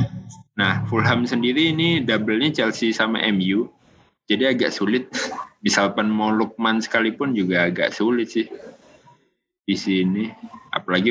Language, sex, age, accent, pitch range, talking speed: Indonesian, male, 20-39, native, 100-125 Hz, 125 wpm